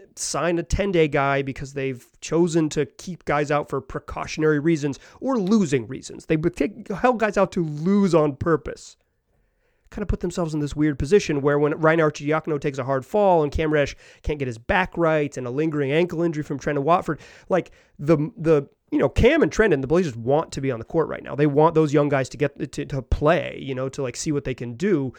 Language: English